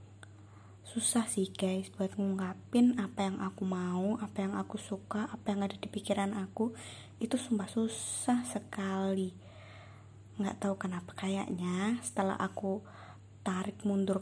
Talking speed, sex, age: 130 wpm, female, 20-39